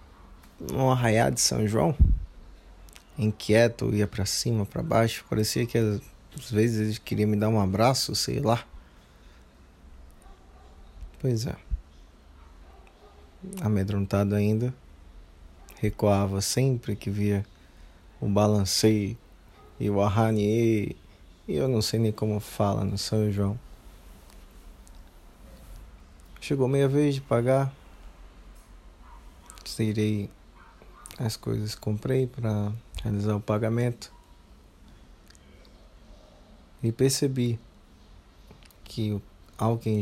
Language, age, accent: Portuguese, 20-39, Brazilian